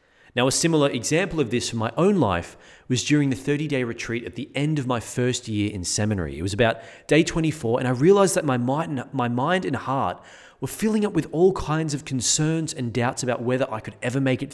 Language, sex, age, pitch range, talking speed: English, male, 30-49, 105-140 Hz, 225 wpm